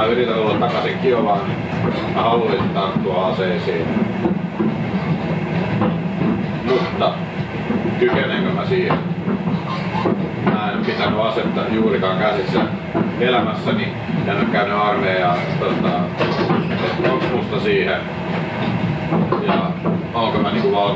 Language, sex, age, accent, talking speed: Finnish, male, 40-59, native, 95 wpm